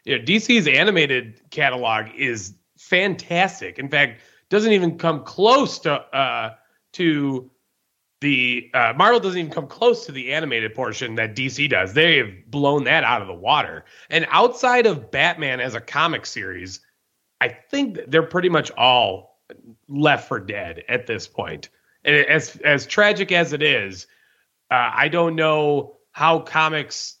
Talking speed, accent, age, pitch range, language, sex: 155 wpm, American, 30-49, 115-160 Hz, English, male